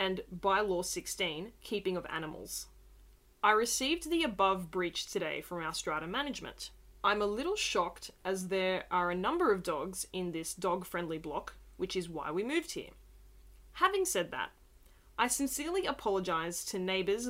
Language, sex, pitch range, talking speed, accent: English, female, 180-225 Hz, 160 wpm, Australian